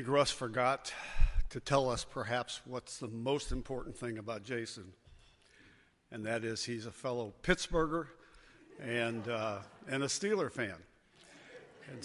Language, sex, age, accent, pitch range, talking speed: English, male, 60-79, American, 110-130 Hz, 135 wpm